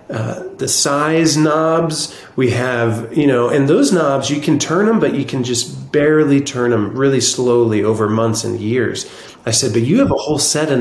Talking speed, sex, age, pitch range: 205 wpm, male, 30-49, 115-155 Hz